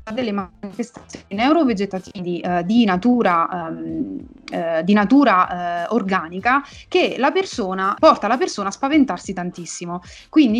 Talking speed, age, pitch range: 125 wpm, 30-49, 190-245 Hz